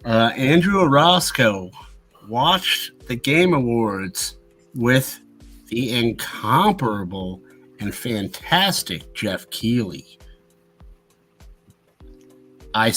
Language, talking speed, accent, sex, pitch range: English, 70 wpm, American, male, 110-165 Hz